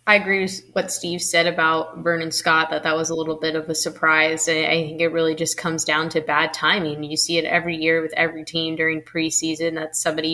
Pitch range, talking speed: 155-170 Hz, 230 wpm